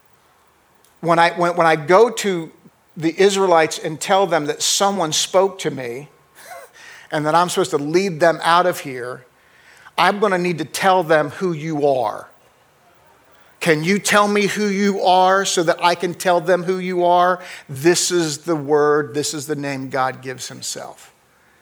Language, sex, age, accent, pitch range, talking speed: English, male, 50-69, American, 155-195 Hz, 180 wpm